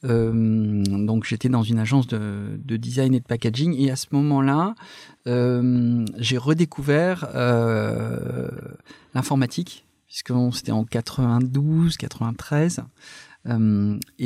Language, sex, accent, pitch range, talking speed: French, male, French, 110-135 Hz, 115 wpm